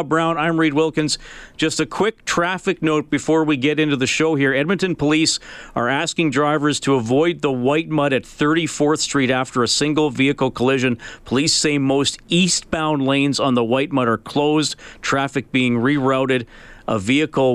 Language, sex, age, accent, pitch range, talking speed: English, male, 40-59, American, 115-150 Hz, 170 wpm